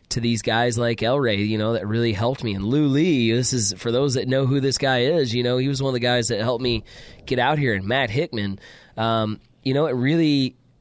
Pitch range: 115-145 Hz